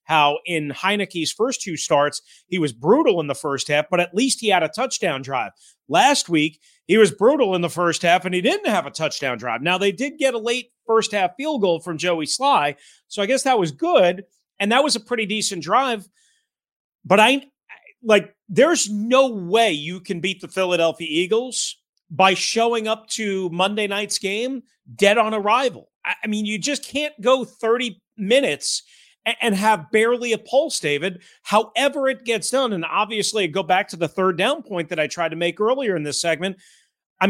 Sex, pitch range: male, 175-245 Hz